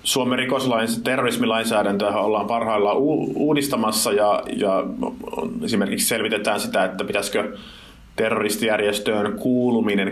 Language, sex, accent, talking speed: Finnish, male, native, 95 wpm